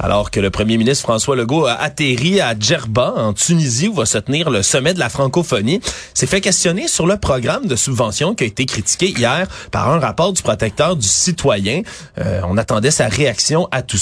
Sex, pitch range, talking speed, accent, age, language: male, 115-155 Hz, 210 wpm, Canadian, 30-49, French